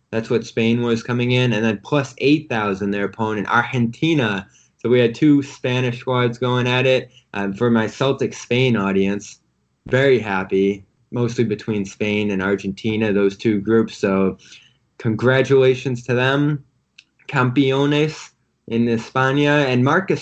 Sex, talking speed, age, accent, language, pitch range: male, 140 wpm, 20-39, American, English, 100-130 Hz